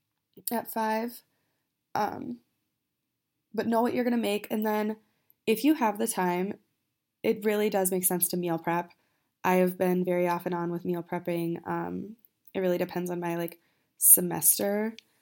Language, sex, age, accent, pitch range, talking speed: English, female, 20-39, American, 170-205 Hz, 165 wpm